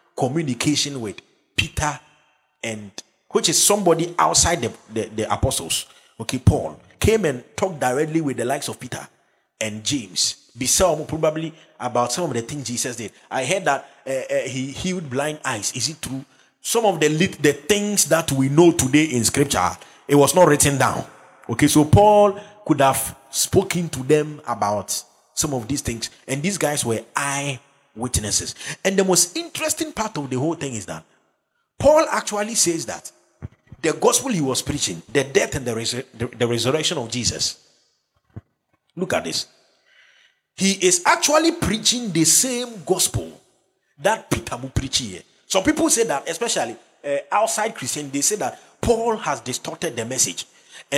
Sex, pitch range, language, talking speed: male, 130-190 Hz, English, 170 wpm